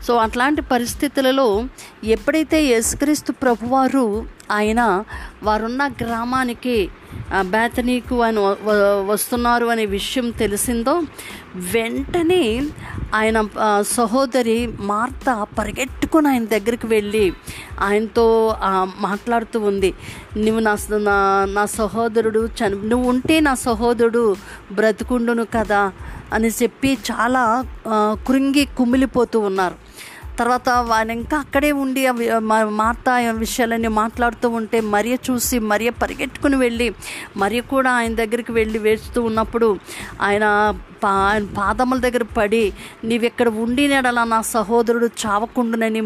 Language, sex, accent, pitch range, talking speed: Telugu, female, native, 215-255 Hz, 95 wpm